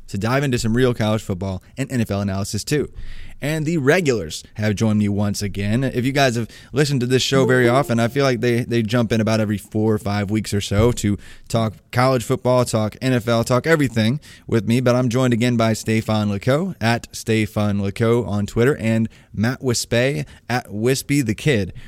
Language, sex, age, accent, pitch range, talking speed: English, male, 20-39, American, 105-125 Hz, 195 wpm